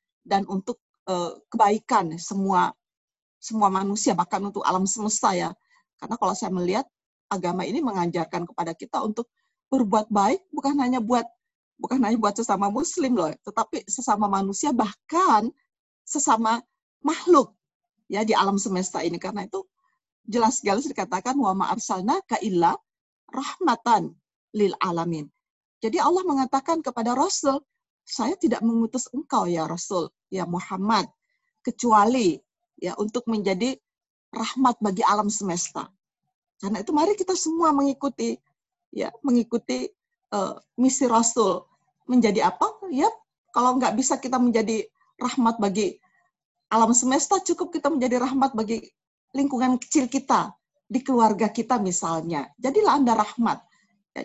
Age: 40-59